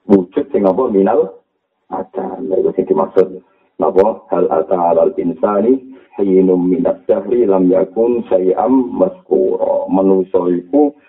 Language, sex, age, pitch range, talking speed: Indonesian, male, 50-69, 95-135 Hz, 105 wpm